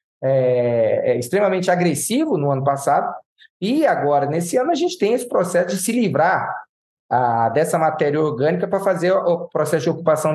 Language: Portuguese